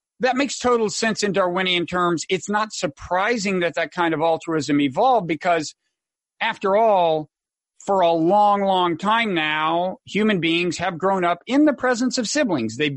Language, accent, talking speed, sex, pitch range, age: English, American, 165 wpm, male, 160-215 Hz, 50-69